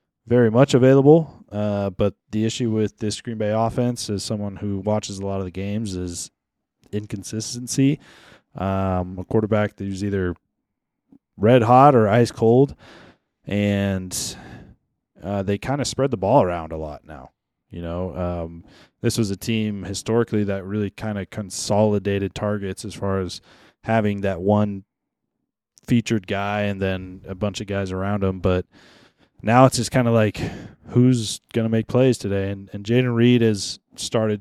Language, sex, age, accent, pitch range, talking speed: English, male, 20-39, American, 95-110 Hz, 165 wpm